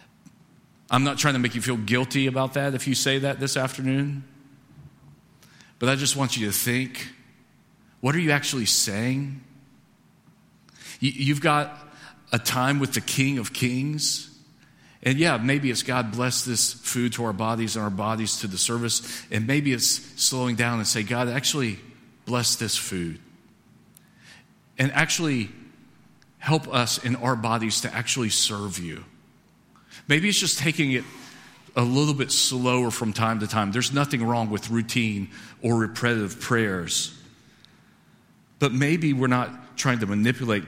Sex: male